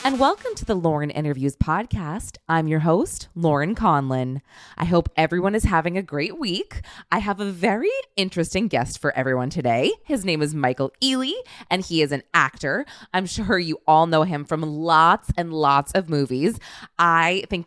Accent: American